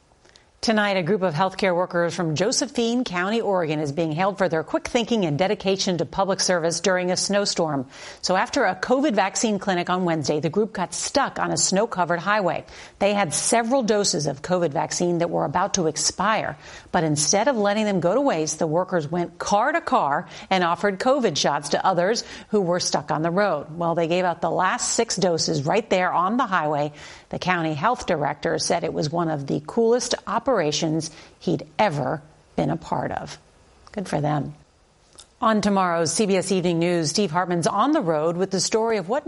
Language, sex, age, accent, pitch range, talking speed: English, female, 50-69, American, 165-210 Hz, 195 wpm